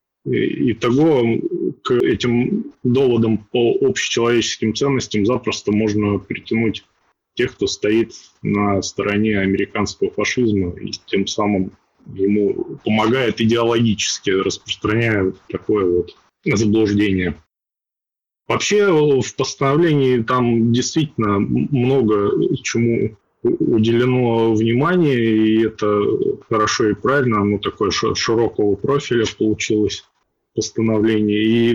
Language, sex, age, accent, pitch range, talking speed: Russian, male, 20-39, native, 105-130 Hz, 90 wpm